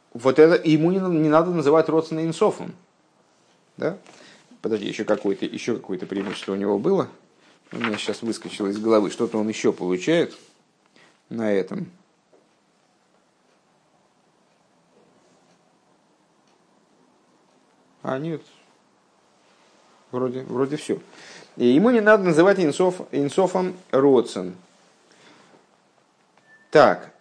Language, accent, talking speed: Russian, native, 90 wpm